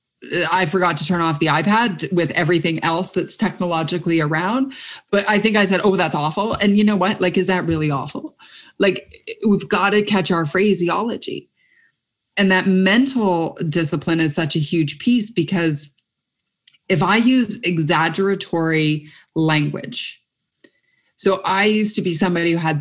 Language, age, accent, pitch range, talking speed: English, 30-49, American, 160-195 Hz, 160 wpm